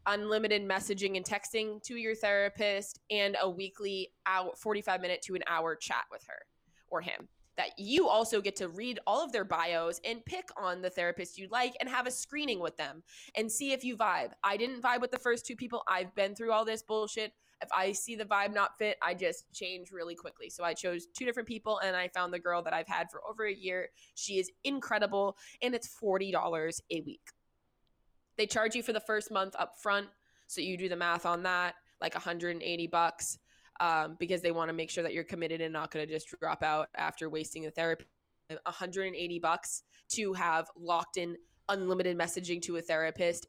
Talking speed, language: 210 wpm, English